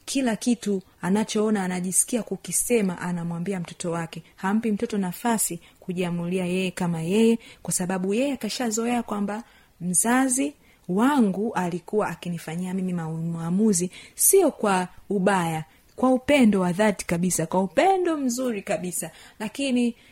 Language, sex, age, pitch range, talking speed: Swahili, female, 30-49, 170-210 Hz, 115 wpm